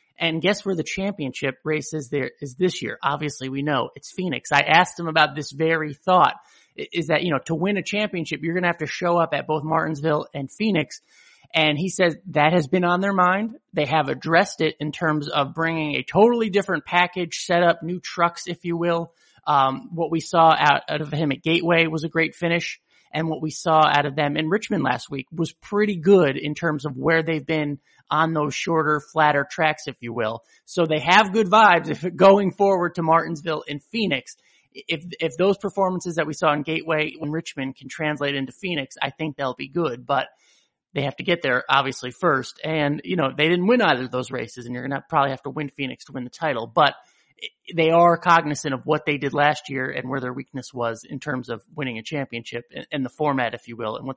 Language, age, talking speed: English, 30-49, 225 wpm